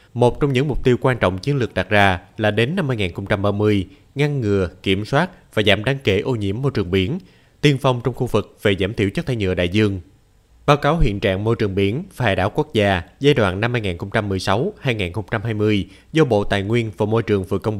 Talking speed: 225 wpm